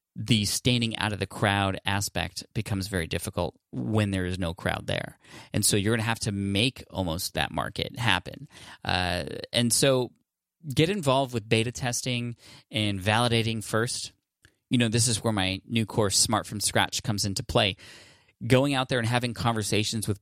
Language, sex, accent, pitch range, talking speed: English, male, American, 95-115 Hz, 180 wpm